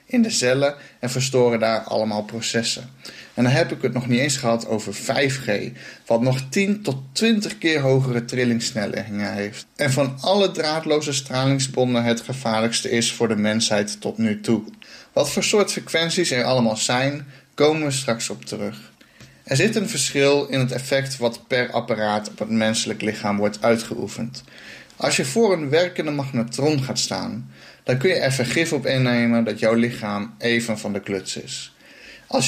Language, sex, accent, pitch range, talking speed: Dutch, male, Dutch, 115-140 Hz, 175 wpm